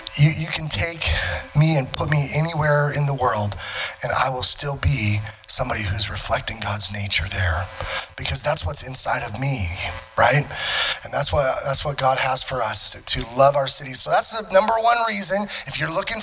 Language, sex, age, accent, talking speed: English, male, 20-39, American, 190 wpm